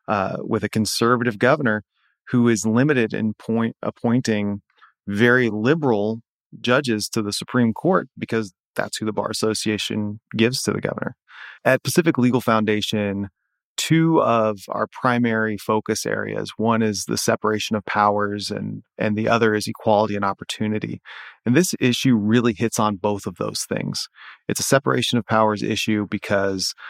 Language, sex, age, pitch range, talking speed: English, male, 30-49, 105-115 Hz, 155 wpm